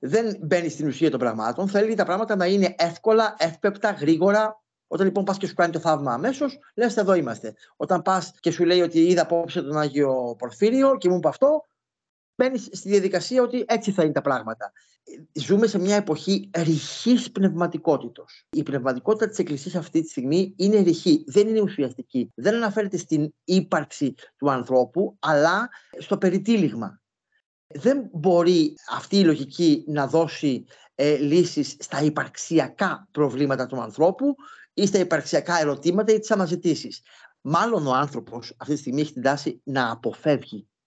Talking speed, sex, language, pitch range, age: 160 wpm, male, Greek, 140-195 Hz, 30-49